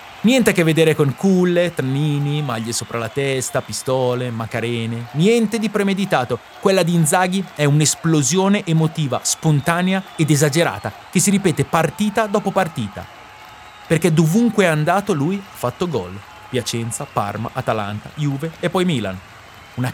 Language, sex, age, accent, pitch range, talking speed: Italian, male, 30-49, native, 125-190 Hz, 140 wpm